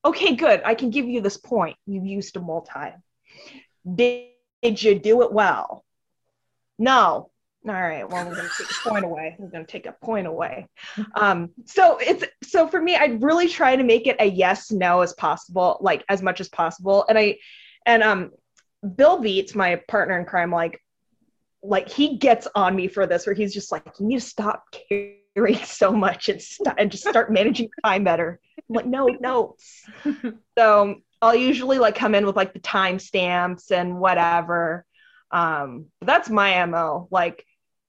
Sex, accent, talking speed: female, American, 180 wpm